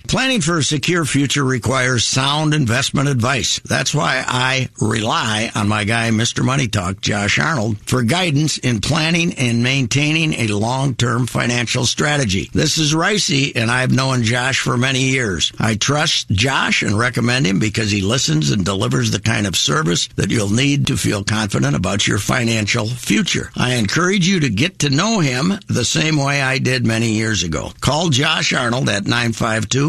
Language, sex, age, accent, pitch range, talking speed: English, male, 60-79, American, 110-145 Hz, 175 wpm